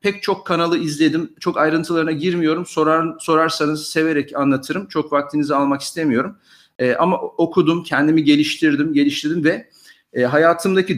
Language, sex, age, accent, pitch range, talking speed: Turkish, male, 50-69, native, 150-180 Hz, 120 wpm